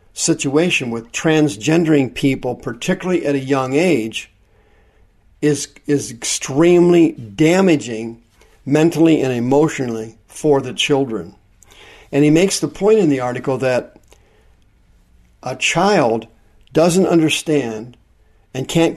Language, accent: English, American